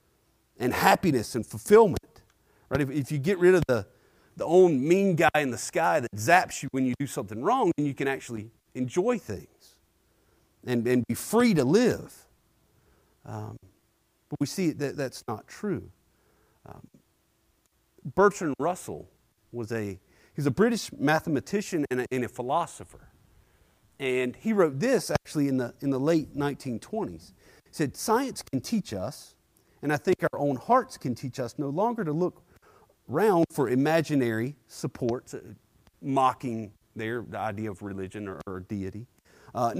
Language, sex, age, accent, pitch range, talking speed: English, male, 40-59, American, 110-155 Hz, 155 wpm